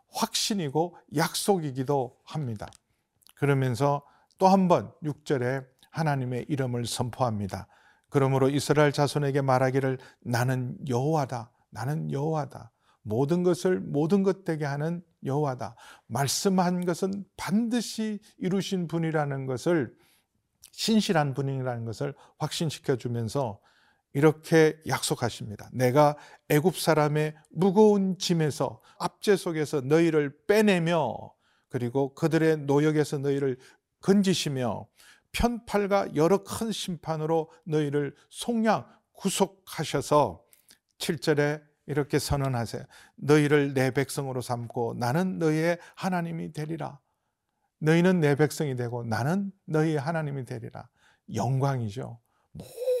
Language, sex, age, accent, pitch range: Korean, male, 50-69, native, 135-175 Hz